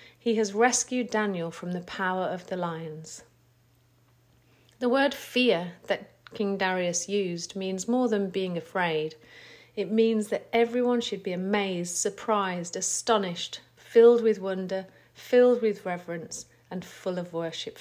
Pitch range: 155-210 Hz